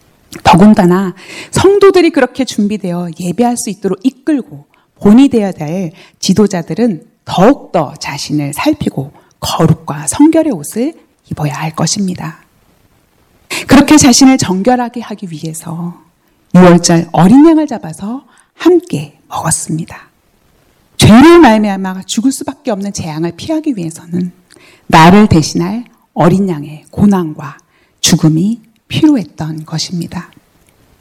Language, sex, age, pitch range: Korean, female, 40-59, 160-240 Hz